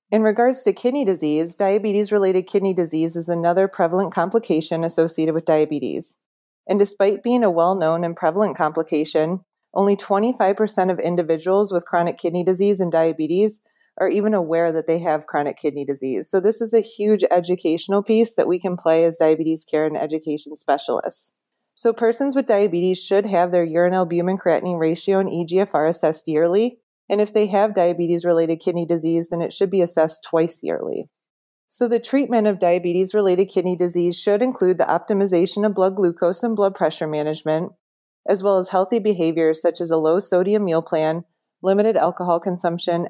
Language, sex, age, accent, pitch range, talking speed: English, female, 30-49, American, 165-205 Hz, 170 wpm